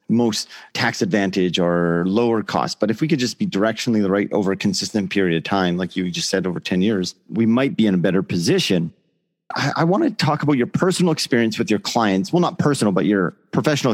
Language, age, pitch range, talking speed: English, 40-59, 105-155 Hz, 225 wpm